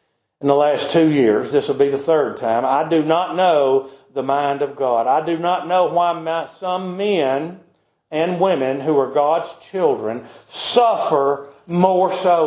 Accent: American